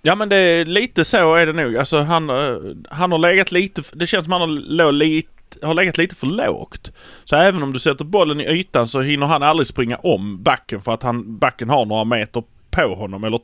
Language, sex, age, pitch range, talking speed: Swedish, male, 30-49, 120-155 Hz, 225 wpm